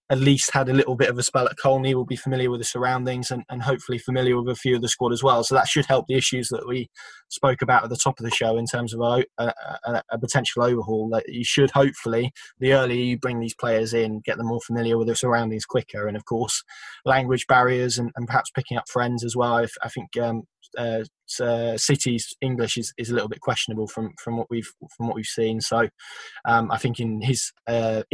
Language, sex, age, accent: English, male, 10-29, British